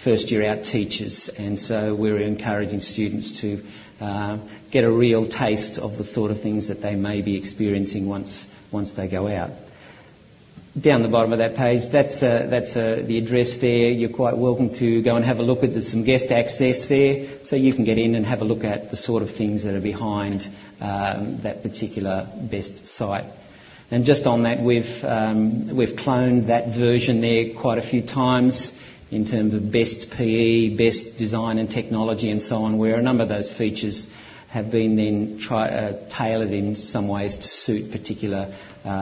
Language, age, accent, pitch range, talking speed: English, 40-59, Australian, 105-120 Hz, 195 wpm